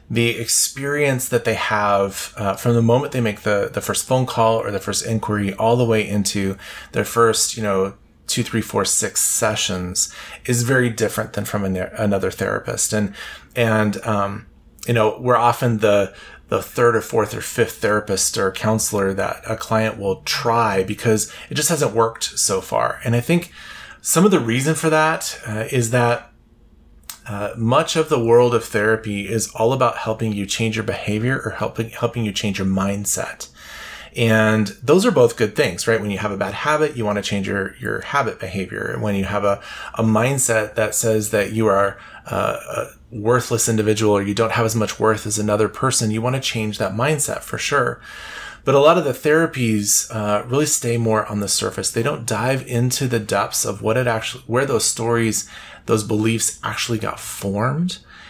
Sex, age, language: male, 20-39, English